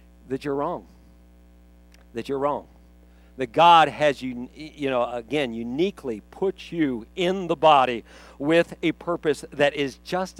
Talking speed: 135 wpm